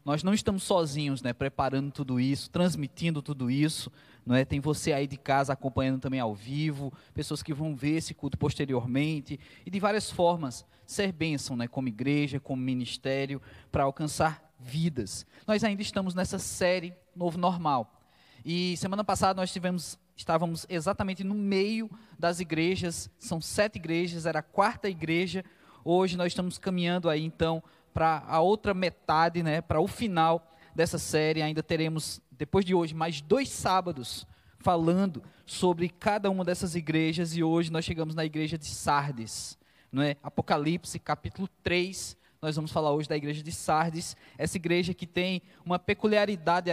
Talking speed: 160 wpm